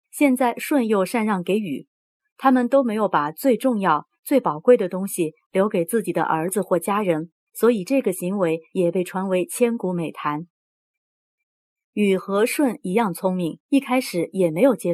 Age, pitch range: 30-49, 175-245 Hz